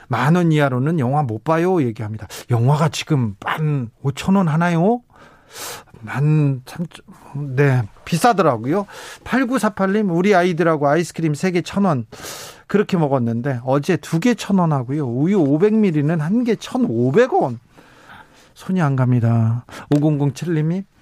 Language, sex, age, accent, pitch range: Korean, male, 40-59, native, 140-180 Hz